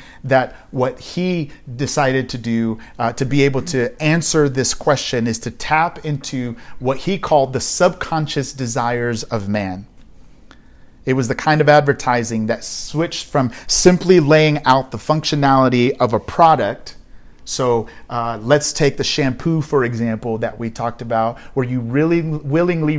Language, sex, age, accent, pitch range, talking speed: English, male, 30-49, American, 115-145 Hz, 155 wpm